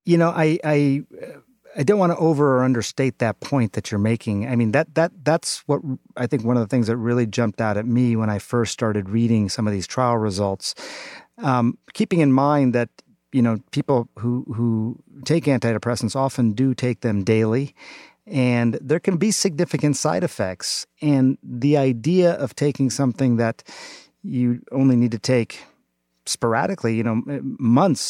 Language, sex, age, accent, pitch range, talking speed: English, male, 40-59, American, 115-145 Hz, 180 wpm